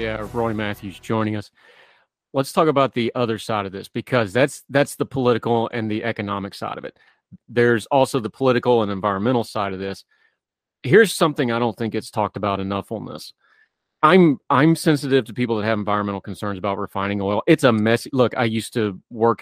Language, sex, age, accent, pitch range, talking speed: English, male, 30-49, American, 100-125 Hz, 200 wpm